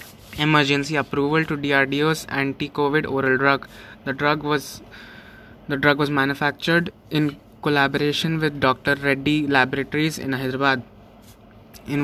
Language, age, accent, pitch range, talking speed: English, 20-39, Indian, 135-155 Hz, 115 wpm